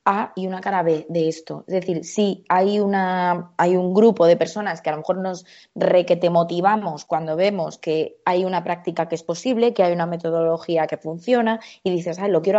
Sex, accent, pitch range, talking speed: female, Spanish, 170-205 Hz, 220 wpm